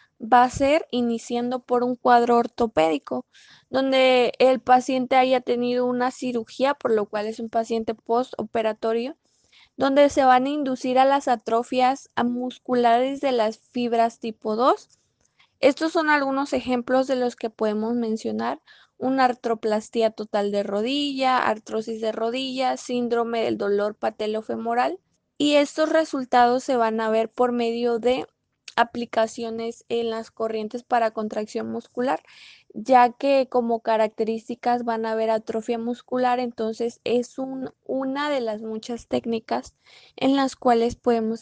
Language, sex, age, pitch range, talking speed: Spanish, female, 20-39, 225-255 Hz, 140 wpm